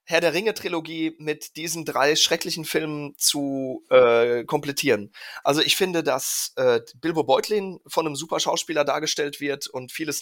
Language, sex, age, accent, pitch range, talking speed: German, male, 30-49, German, 140-165 Hz, 140 wpm